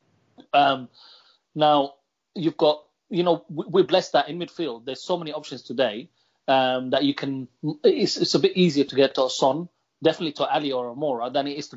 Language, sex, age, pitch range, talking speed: English, male, 30-49, 140-175 Hz, 200 wpm